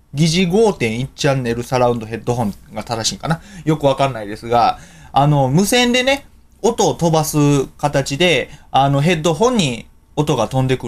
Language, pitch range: Japanese, 115-165 Hz